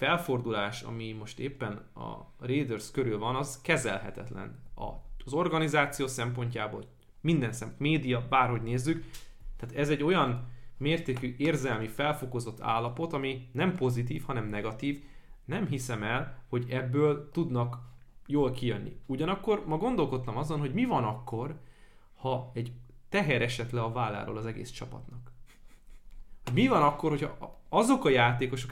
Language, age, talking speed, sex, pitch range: Hungarian, 20-39, 135 wpm, male, 120-145 Hz